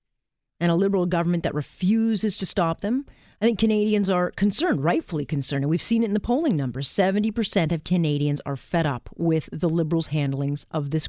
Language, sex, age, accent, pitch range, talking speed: English, female, 40-59, American, 150-190 Hz, 195 wpm